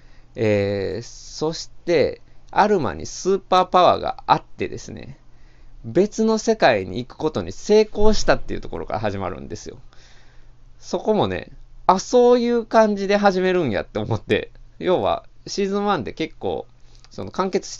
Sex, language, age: male, Japanese, 20-39